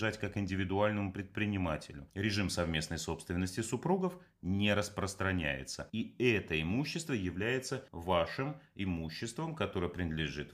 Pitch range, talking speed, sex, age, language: 85-125 Hz, 95 wpm, male, 30-49, Russian